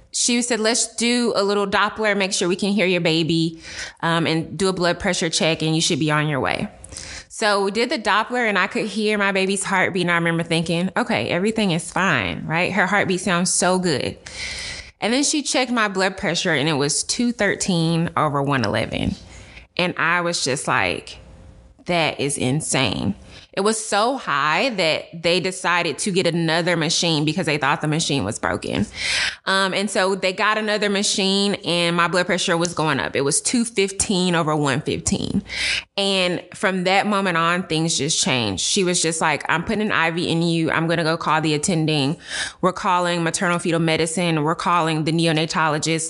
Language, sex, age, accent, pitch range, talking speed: English, female, 20-39, American, 160-195 Hz, 190 wpm